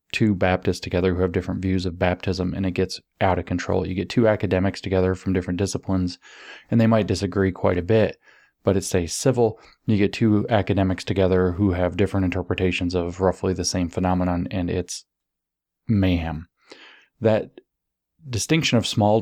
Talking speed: 170 wpm